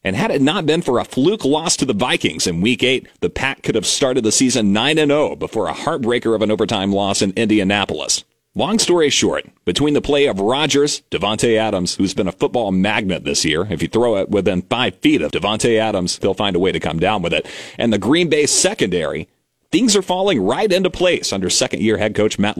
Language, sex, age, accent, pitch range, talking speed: English, male, 40-59, American, 100-130 Hz, 230 wpm